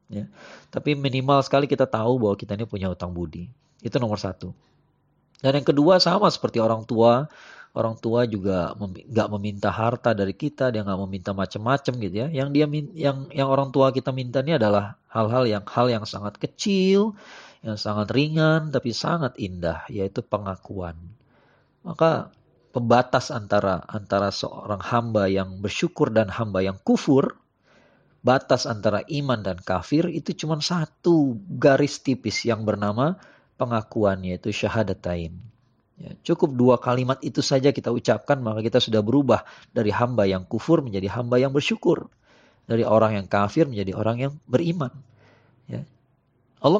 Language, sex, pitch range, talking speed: Indonesian, male, 105-145 Hz, 150 wpm